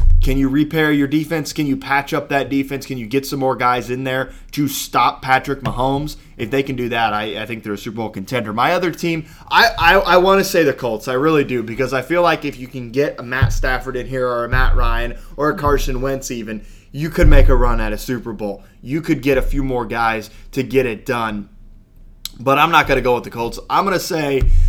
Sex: male